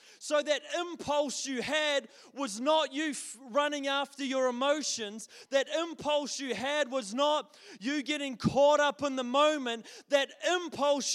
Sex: male